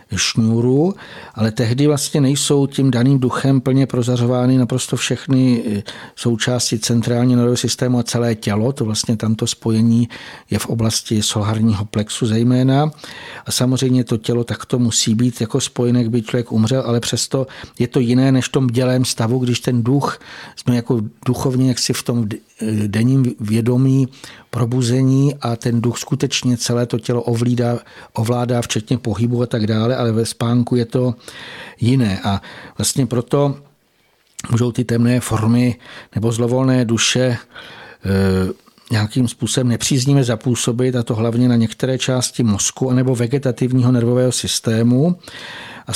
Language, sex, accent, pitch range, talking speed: Czech, male, native, 115-130 Hz, 140 wpm